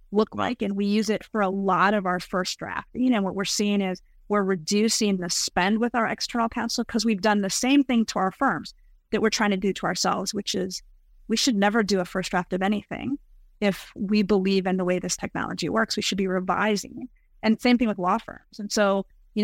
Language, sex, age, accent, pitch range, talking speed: English, female, 30-49, American, 190-225 Hz, 235 wpm